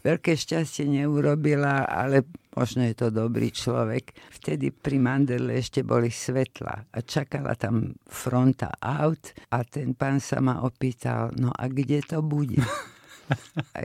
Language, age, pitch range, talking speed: Slovak, 50-69, 120-145 Hz, 140 wpm